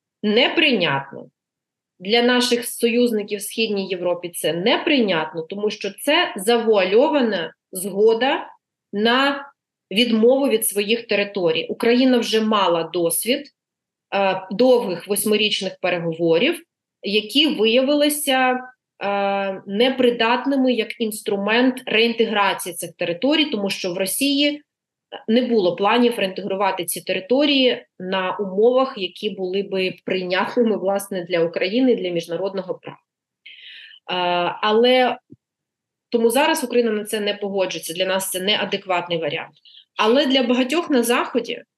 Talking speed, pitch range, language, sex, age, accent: 110 wpm, 195-250 Hz, Ukrainian, female, 30-49, native